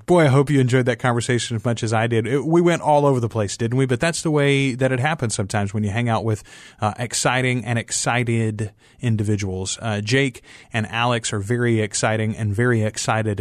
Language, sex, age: English, male, 30-49